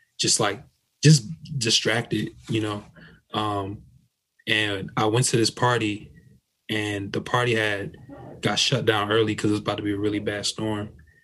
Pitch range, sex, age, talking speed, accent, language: 105-120 Hz, male, 20-39, 165 wpm, American, English